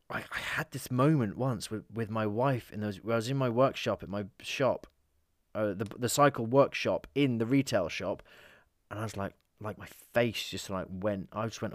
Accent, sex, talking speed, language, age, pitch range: British, male, 215 wpm, English, 20-39, 85-115 Hz